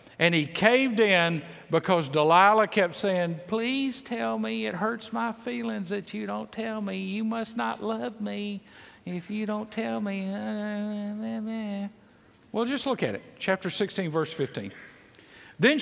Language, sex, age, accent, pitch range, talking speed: English, male, 50-69, American, 170-225 Hz, 150 wpm